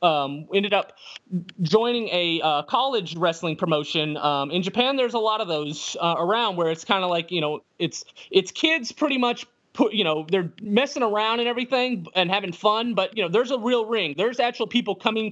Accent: American